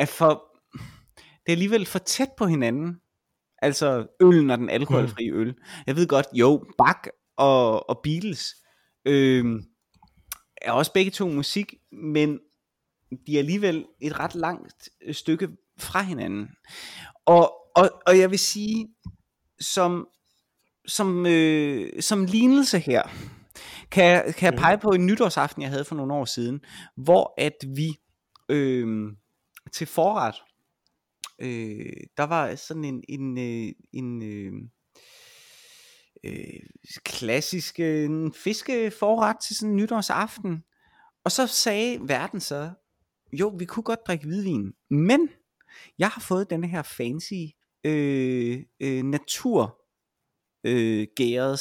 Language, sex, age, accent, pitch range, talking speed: Danish, male, 20-39, native, 135-205 Hz, 130 wpm